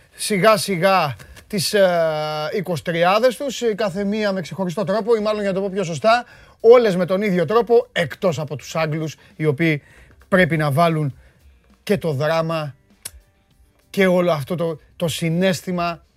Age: 30-49